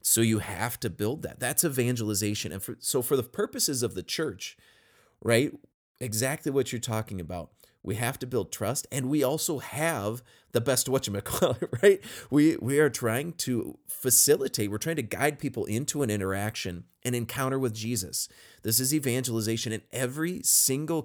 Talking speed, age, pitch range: 185 wpm, 30-49, 105-130 Hz